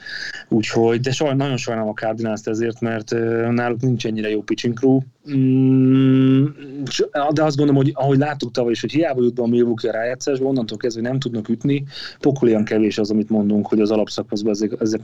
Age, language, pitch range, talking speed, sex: 30-49, Hungarian, 110-130 Hz, 170 wpm, male